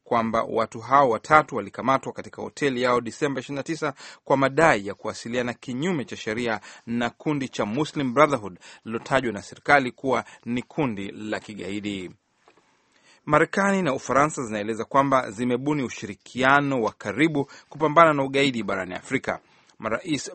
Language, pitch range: Swahili, 110-145 Hz